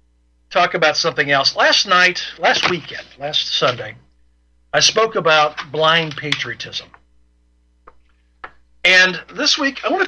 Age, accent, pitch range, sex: 50-69, American, 125-170 Hz, male